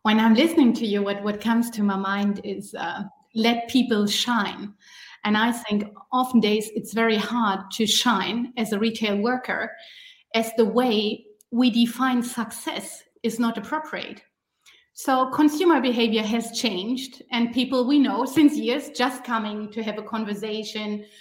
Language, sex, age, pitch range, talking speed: English, female, 30-49, 215-255 Hz, 160 wpm